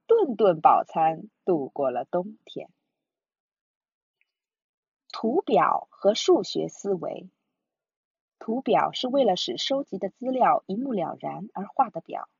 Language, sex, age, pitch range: Chinese, female, 20-39, 185-275 Hz